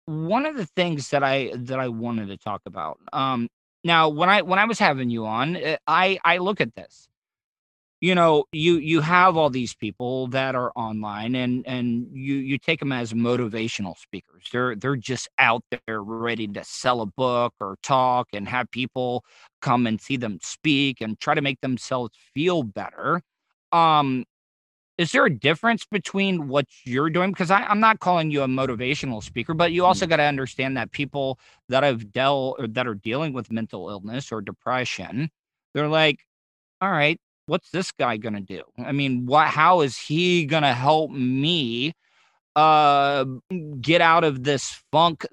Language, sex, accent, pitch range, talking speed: English, male, American, 125-165 Hz, 180 wpm